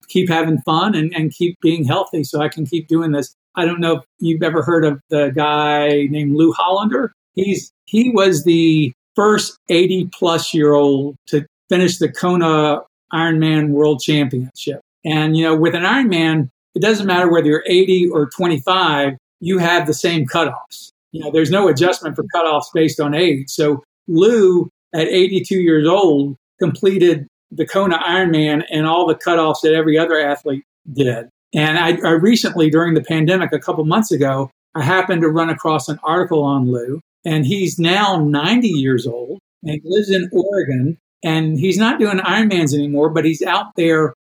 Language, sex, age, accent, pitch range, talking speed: English, male, 50-69, American, 150-180 Hz, 170 wpm